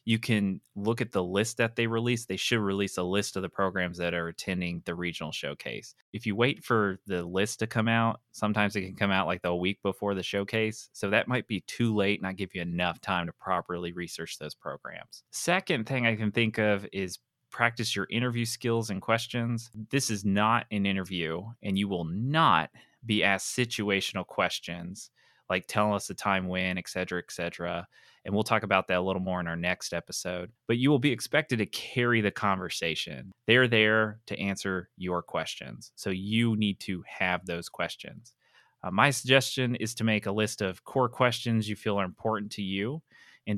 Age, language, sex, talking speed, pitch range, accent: 30-49, English, male, 205 wpm, 95-115 Hz, American